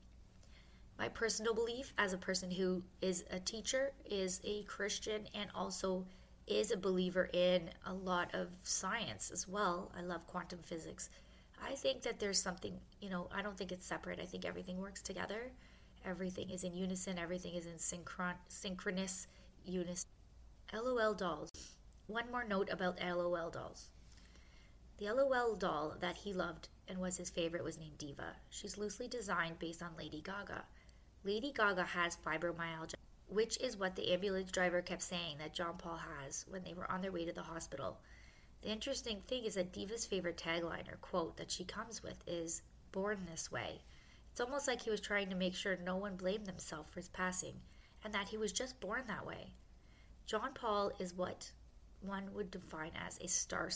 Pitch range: 170-205 Hz